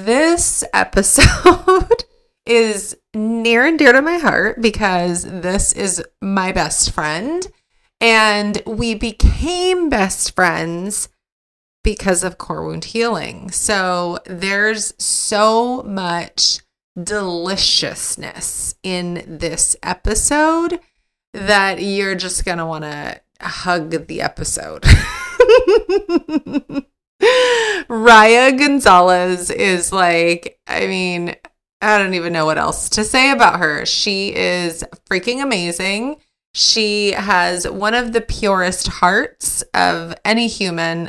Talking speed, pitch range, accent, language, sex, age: 105 wpm, 175-240 Hz, American, English, female, 30-49